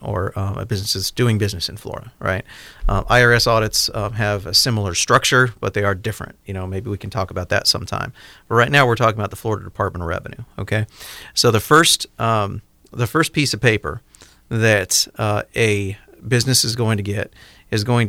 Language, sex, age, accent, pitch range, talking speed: English, male, 40-59, American, 105-125 Hz, 205 wpm